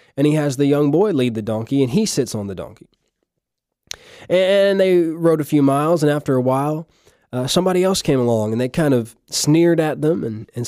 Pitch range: 120-150 Hz